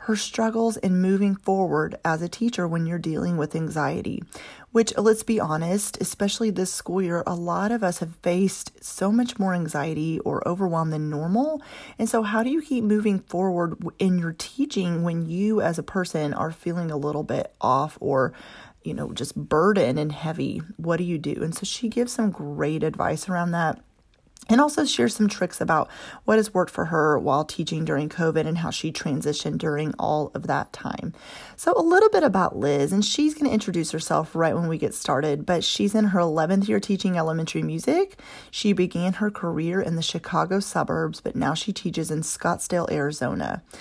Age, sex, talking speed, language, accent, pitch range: 30-49, female, 195 wpm, English, American, 160-210 Hz